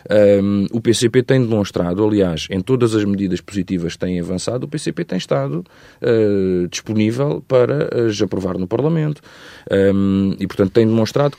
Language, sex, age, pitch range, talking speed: Portuguese, male, 40-59, 95-130 Hz, 140 wpm